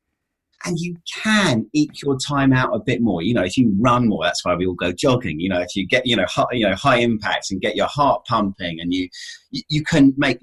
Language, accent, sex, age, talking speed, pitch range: English, British, male, 30-49, 255 wpm, 95-135 Hz